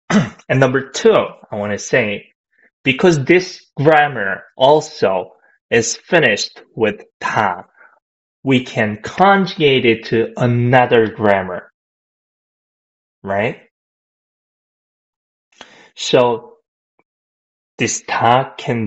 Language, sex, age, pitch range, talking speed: English, male, 20-39, 115-175 Hz, 85 wpm